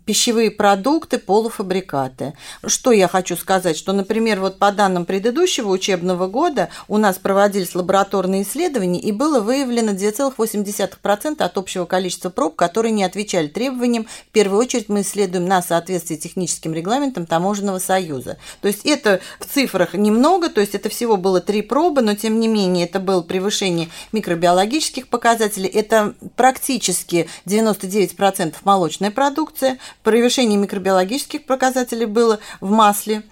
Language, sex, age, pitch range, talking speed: Russian, female, 40-59, 185-235 Hz, 135 wpm